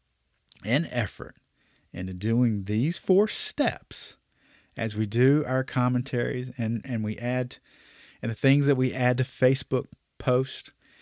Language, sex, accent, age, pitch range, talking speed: English, male, American, 40-59, 105-145 Hz, 135 wpm